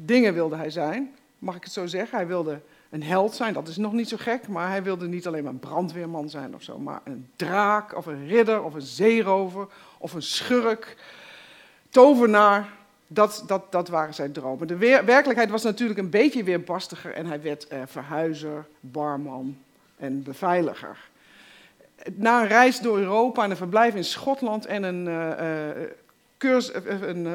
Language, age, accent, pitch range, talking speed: Dutch, 50-69, Dutch, 165-225 Hz, 175 wpm